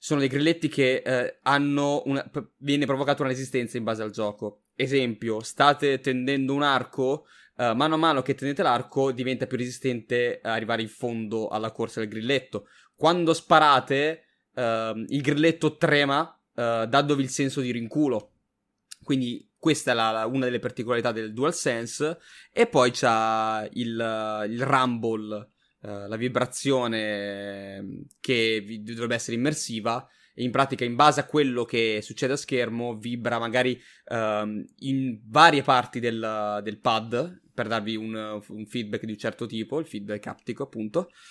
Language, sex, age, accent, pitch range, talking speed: Italian, male, 20-39, native, 110-140 Hz, 155 wpm